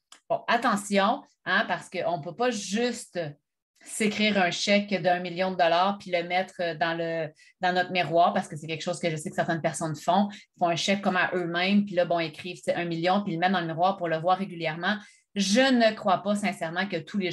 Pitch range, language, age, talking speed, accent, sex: 170-215 Hz, French, 30-49, 235 wpm, Canadian, female